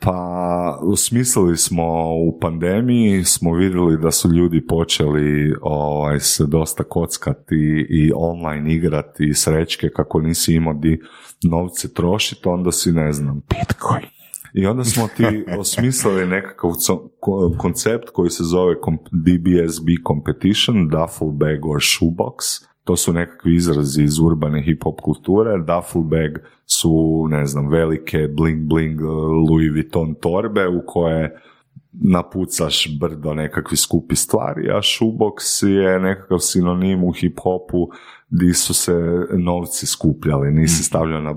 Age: 30-49